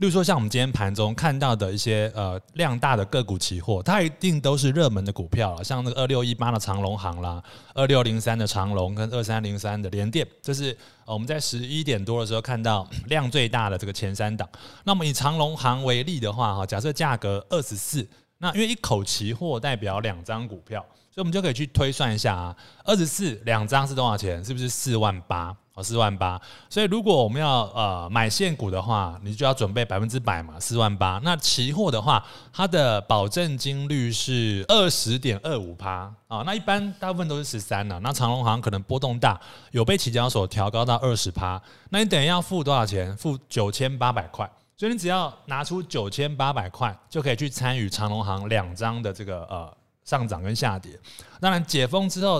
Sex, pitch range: male, 105-140 Hz